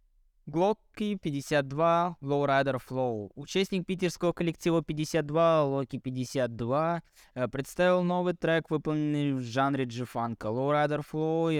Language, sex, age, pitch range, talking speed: Russian, male, 20-39, 120-155 Hz, 115 wpm